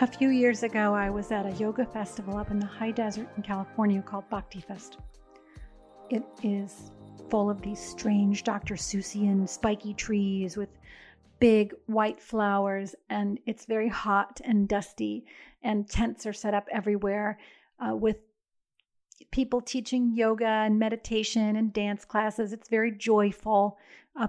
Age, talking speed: 40-59, 150 wpm